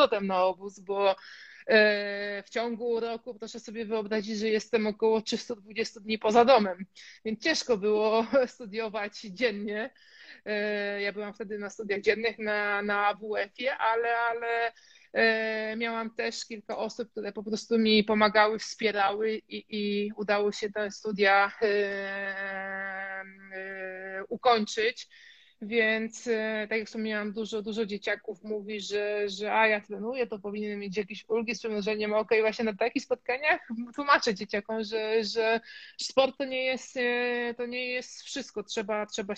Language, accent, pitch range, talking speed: Polish, native, 210-235 Hz, 140 wpm